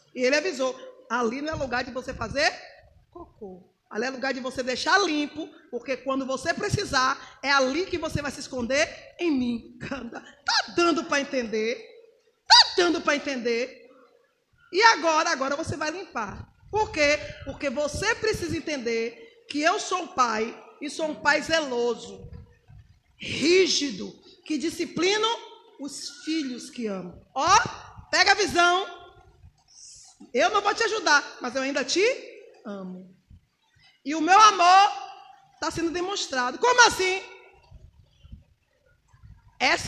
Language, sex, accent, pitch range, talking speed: Portuguese, female, Brazilian, 255-380 Hz, 140 wpm